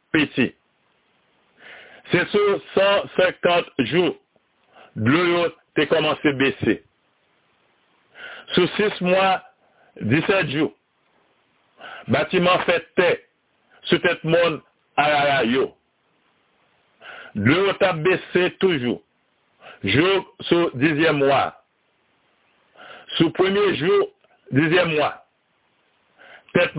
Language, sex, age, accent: French, male, 60-79, French